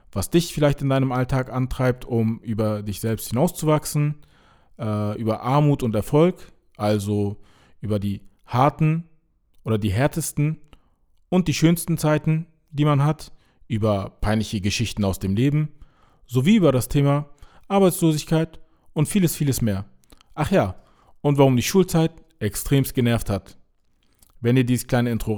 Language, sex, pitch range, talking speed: German, male, 110-160 Hz, 140 wpm